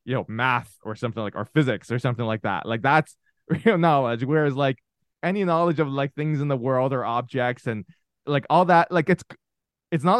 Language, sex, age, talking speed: English, male, 20-39, 210 wpm